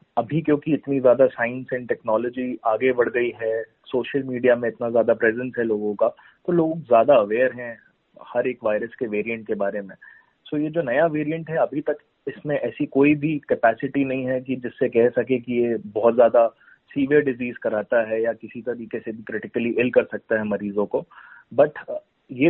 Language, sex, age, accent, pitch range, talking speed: Hindi, male, 30-49, native, 115-145 Hz, 200 wpm